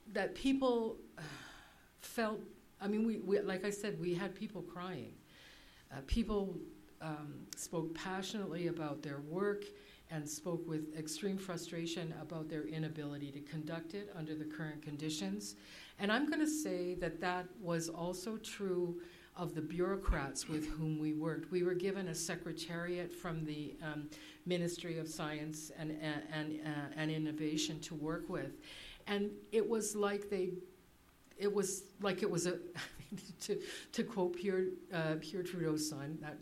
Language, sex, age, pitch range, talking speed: English, female, 50-69, 155-190 Hz, 155 wpm